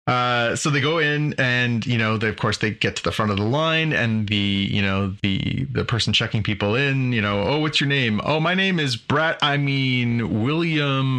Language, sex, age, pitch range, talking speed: English, male, 30-49, 105-135 Hz, 230 wpm